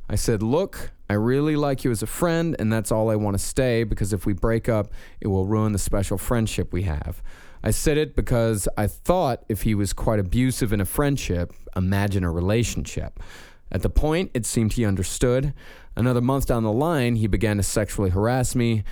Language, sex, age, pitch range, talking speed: English, male, 30-49, 100-125 Hz, 205 wpm